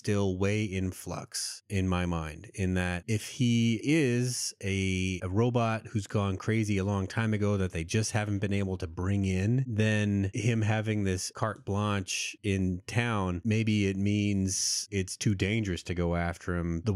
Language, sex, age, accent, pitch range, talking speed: English, male, 30-49, American, 95-115 Hz, 175 wpm